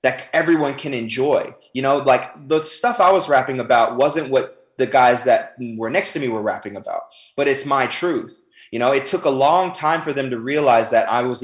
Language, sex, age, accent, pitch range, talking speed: English, male, 20-39, American, 115-140 Hz, 225 wpm